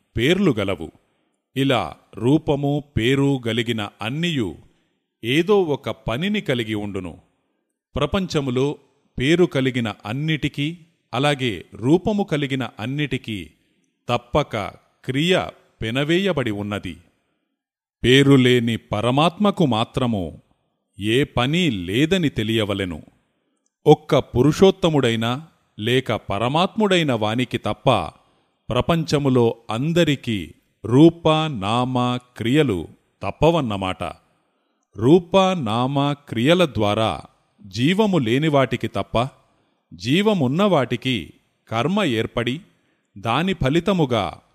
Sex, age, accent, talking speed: male, 30-49, native, 70 wpm